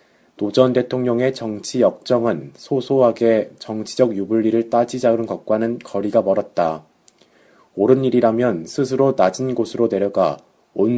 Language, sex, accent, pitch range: Korean, male, native, 105-125 Hz